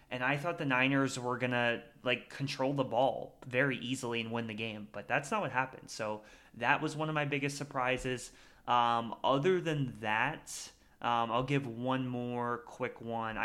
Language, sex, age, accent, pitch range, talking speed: English, male, 20-39, American, 120-145 Hz, 185 wpm